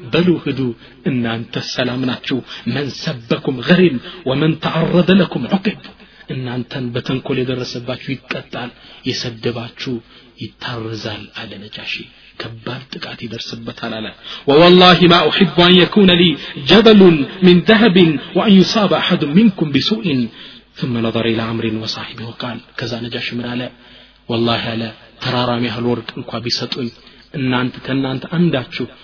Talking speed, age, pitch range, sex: 130 wpm, 30-49, 120-175 Hz, male